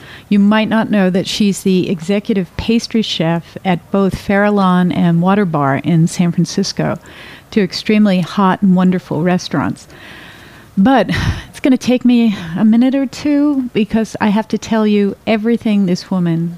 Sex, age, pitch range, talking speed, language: female, 50-69, 175-215 Hz, 165 wpm, English